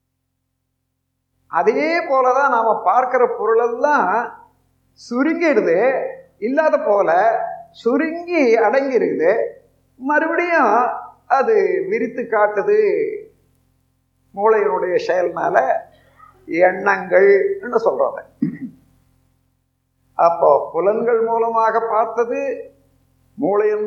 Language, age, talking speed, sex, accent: Tamil, 50-69, 65 wpm, male, native